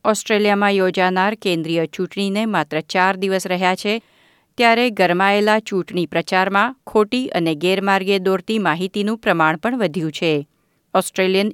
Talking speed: 120 wpm